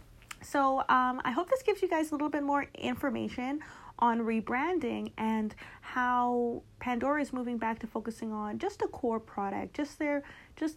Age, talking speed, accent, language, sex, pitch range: 30-49, 175 wpm, American, English, female, 205-250 Hz